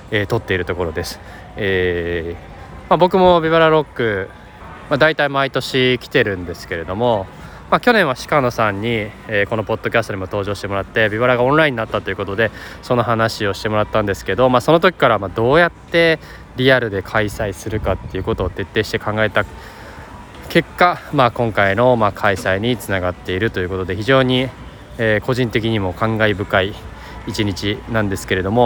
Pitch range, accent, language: 100-130 Hz, native, Japanese